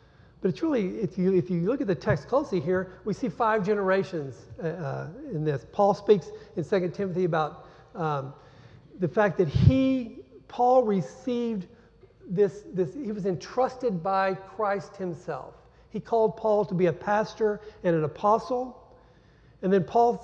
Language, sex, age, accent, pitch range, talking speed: English, male, 50-69, American, 165-210 Hz, 155 wpm